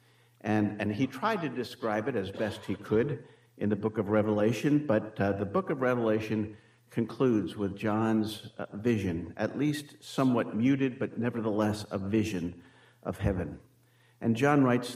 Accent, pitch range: American, 105-125 Hz